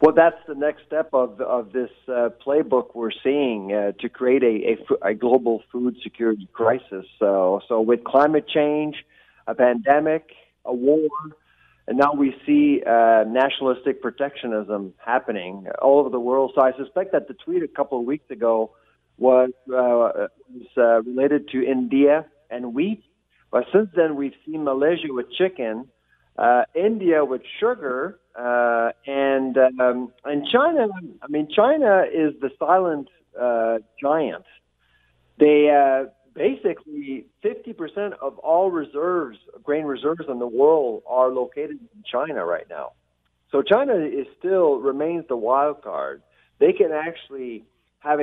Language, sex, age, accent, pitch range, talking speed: English, male, 50-69, American, 120-155 Hz, 150 wpm